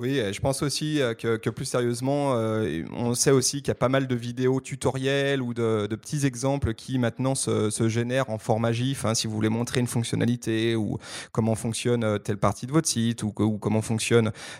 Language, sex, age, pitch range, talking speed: French, male, 30-49, 110-135 Hz, 220 wpm